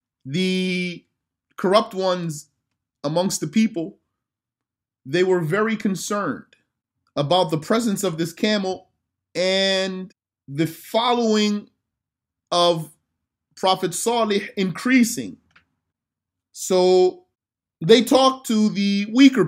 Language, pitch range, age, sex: Arabic, 160-185 Hz, 30-49, male